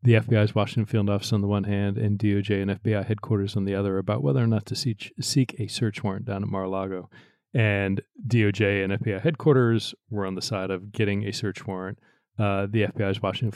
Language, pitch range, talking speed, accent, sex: English, 95-115 Hz, 215 wpm, American, male